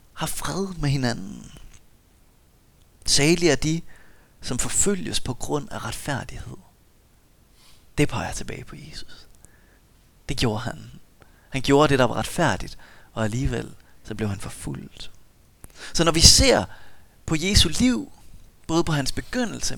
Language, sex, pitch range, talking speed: Danish, male, 115-175 Hz, 135 wpm